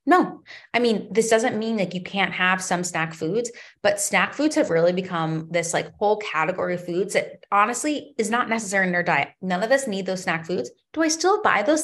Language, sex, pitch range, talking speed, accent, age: English, female, 175-245 Hz, 230 wpm, American, 20-39